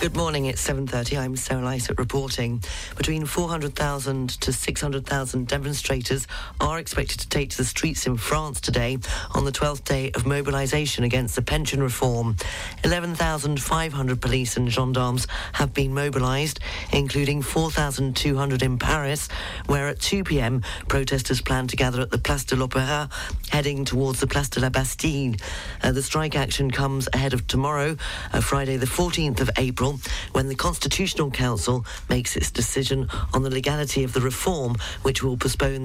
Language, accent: English, British